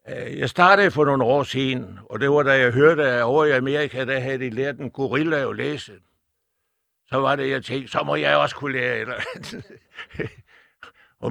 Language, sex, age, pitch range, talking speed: Danish, male, 60-79, 125-155 Hz, 190 wpm